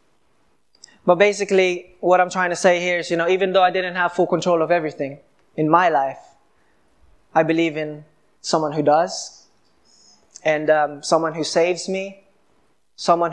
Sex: male